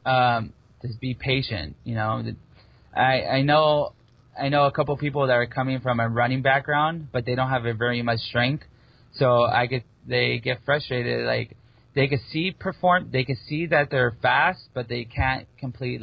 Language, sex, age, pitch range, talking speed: English, male, 20-39, 115-135 Hz, 190 wpm